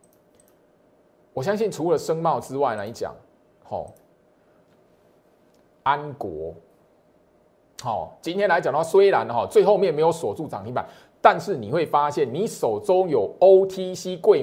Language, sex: Chinese, male